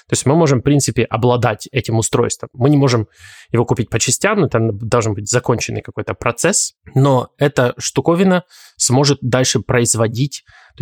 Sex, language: male, Russian